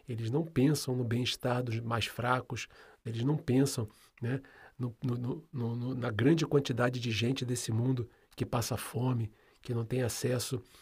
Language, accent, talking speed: Portuguese, Brazilian, 145 wpm